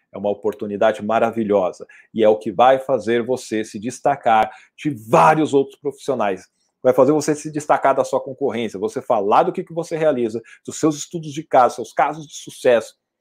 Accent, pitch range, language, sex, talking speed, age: Brazilian, 120-165 Hz, Portuguese, male, 180 wpm, 40-59